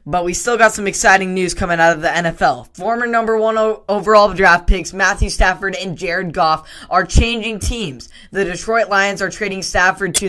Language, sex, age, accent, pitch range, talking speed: English, female, 10-29, American, 175-205 Hz, 190 wpm